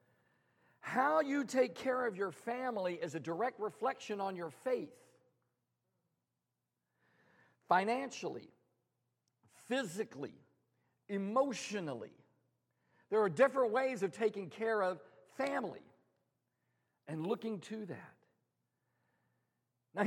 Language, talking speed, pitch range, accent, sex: English, 95 wpm, 150-225 Hz, American, male